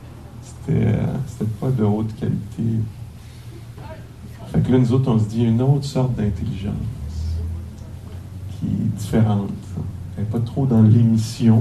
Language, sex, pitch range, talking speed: English, male, 110-120 Hz, 135 wpm